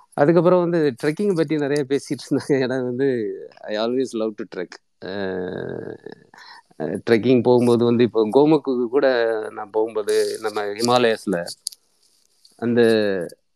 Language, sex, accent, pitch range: Tamil, male, native, 110-140 Hz